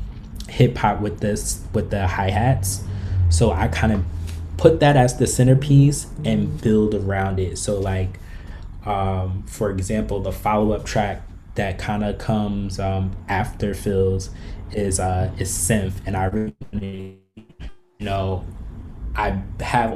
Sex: male